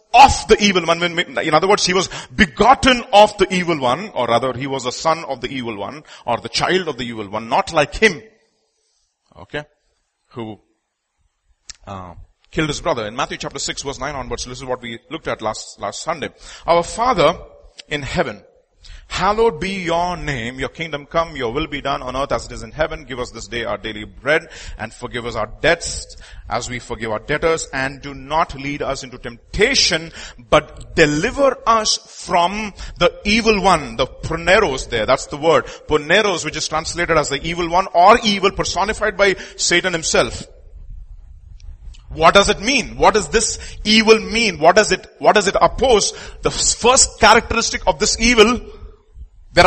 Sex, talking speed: male, 185 wpm